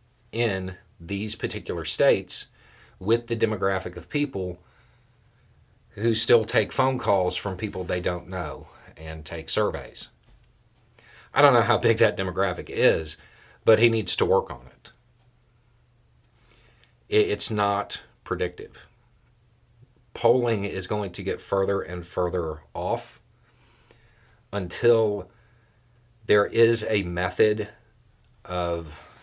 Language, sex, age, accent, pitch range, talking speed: English, male, 40-59, American, 90-120 Hz, 115 wpm